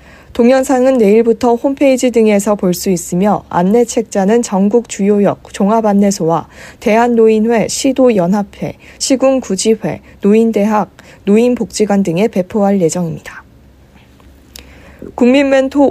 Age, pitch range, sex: 40-59, 195-245 Hz, female